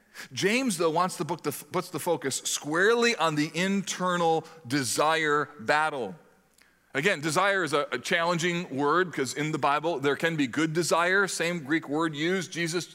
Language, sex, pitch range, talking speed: English, male, 135-170 Hz, 165 wpm